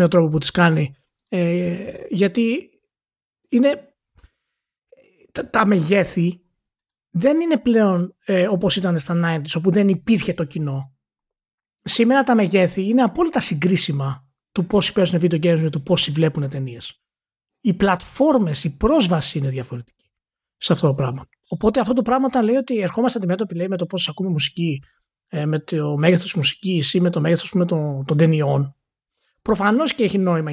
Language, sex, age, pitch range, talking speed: Greek, male, 30-49, 165-235 Hz, 155 wpm